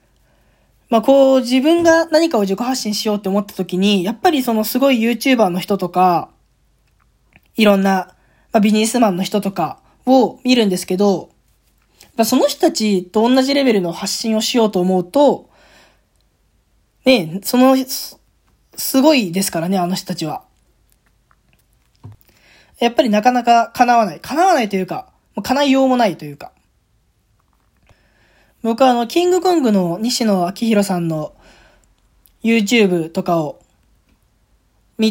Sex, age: female, 20-39